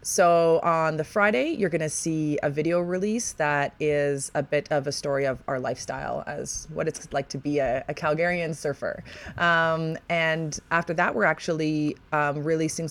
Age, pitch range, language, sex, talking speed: 20-39, 145-170 Hz, English, female, 180 wpm